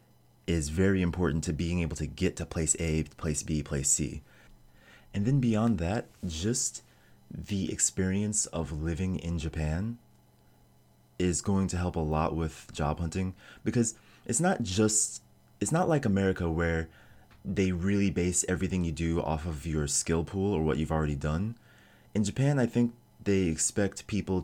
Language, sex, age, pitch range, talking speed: English, male, 30-49, 75-95 Hz, 165 wpm